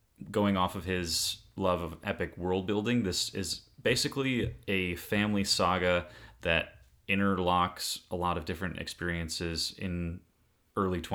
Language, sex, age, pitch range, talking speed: English, male, 30-49, 85-100 Hz, 130 wpm